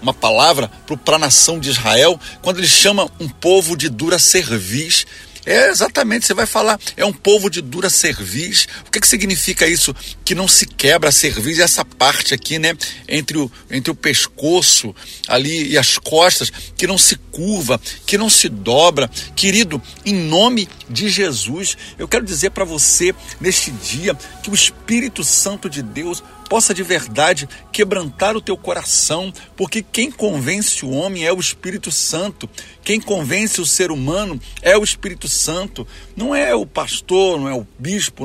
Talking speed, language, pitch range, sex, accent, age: 175 wpm, Portuguese, 145-195 Hz, male, Brazilian, 60-79